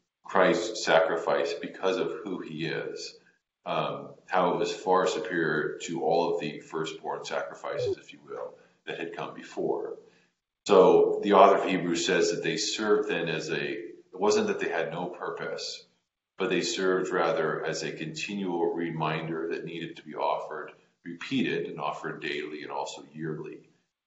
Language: English